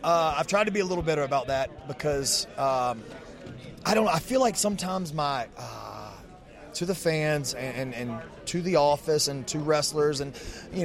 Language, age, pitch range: English, 30-49, 135-180 Hz